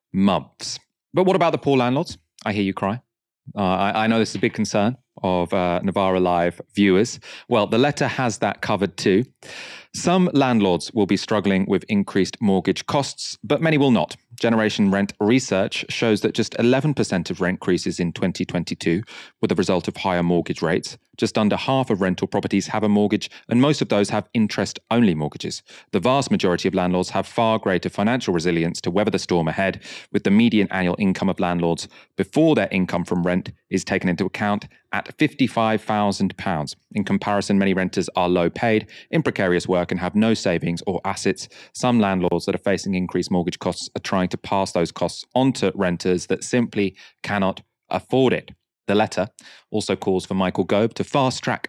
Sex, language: male, English